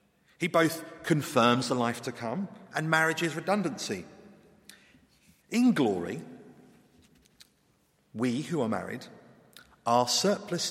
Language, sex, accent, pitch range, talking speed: English, male, British, 145-215 Hz, 105 wpm